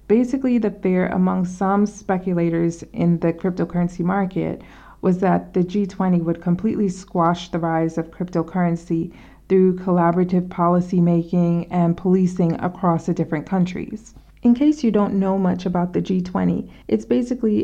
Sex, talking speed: female, 145 wpm